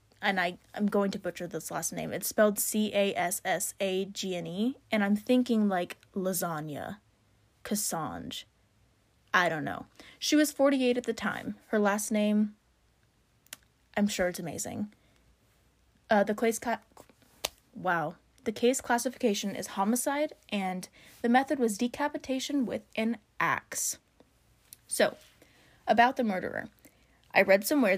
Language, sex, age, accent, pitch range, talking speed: English, female, 20-39, American, 185-230 Hz, 125 wpm